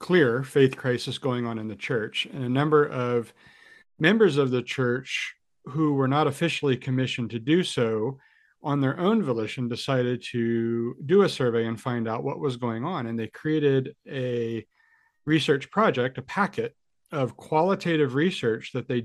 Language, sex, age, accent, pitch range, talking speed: English, male, 40-59, American, 120-145 Hz, 165 wpm